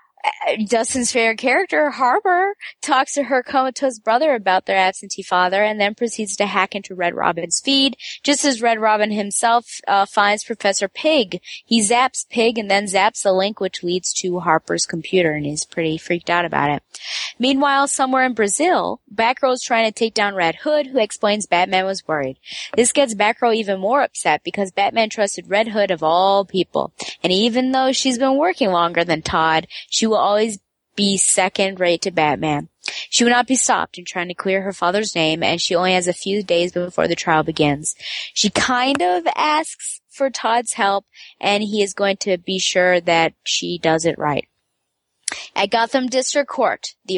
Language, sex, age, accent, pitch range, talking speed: English, female, 20-39, American, 180-235 Hz, 185 wpm